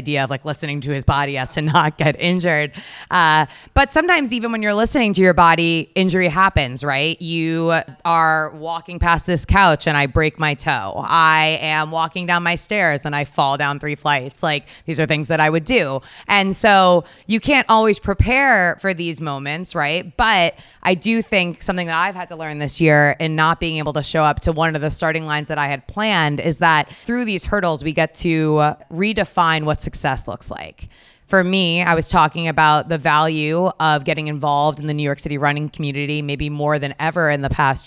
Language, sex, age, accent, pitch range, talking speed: English, female, 20-39, American, 145-175 Hz, 210 wpm